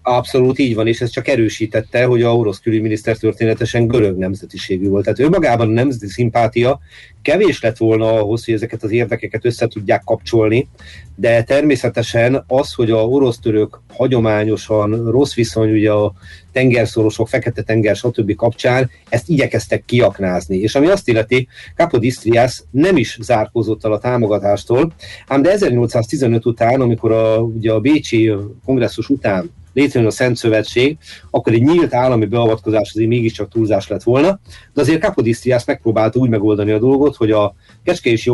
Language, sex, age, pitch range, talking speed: Hungarian, male, 40-59, 110-125 Hz, 150 wpm